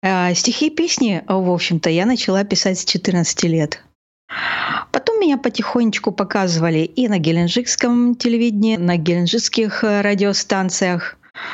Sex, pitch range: female, 165-210 Hz